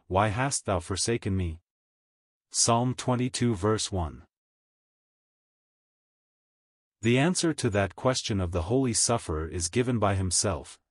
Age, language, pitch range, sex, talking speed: 40-59, English, 90-120 Hz, male, 120 wpm